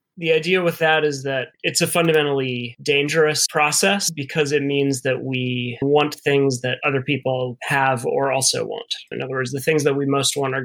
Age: 20-39